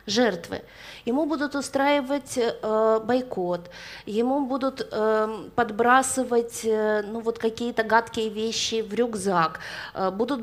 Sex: female